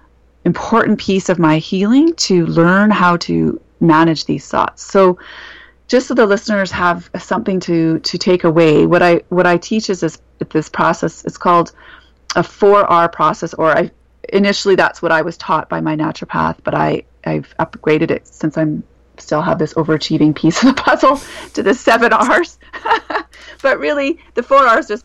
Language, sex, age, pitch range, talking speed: English, female, 30-49, 160-205 Hz, 175 wpm